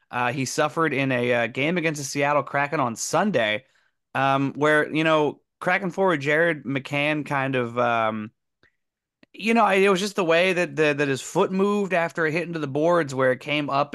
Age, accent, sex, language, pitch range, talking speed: 30-49, American, male, English, 115-165 Hz, 200 wpm